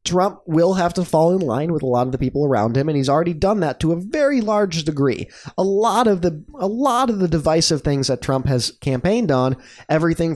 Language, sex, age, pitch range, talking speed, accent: English, male, 20-39, 130-185 Hz, 240 wpm, American